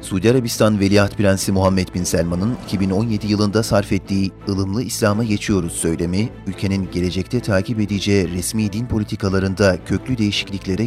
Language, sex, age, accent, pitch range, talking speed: Turkish, male, 40-59, native, 95-110 Hz, 130 wpm